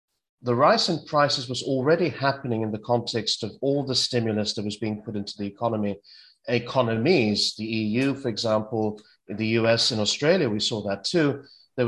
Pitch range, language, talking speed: 105-130 Hz, English, 175 wpm